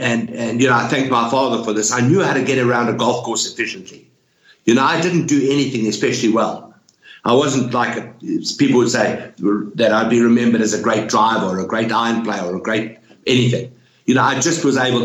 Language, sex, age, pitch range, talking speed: English, male, 60-79, 110-130 Hz, 225 wpm